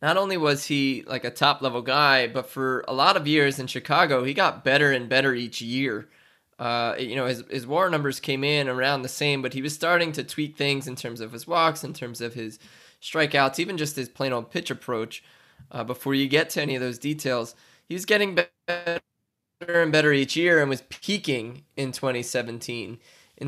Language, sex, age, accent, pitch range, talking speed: English, male, 20-39, American, 125-150 Hz, 210 wpm